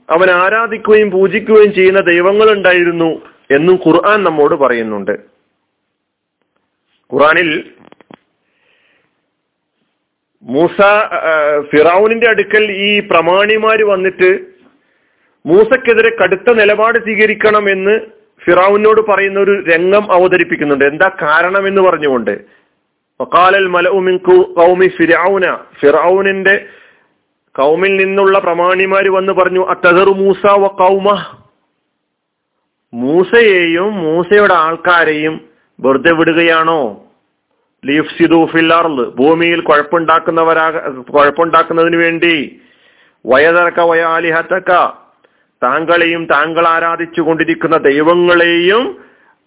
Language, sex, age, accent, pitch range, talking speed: Malayalam, male, 40-59, native, 165-195 Hz, 65 wpm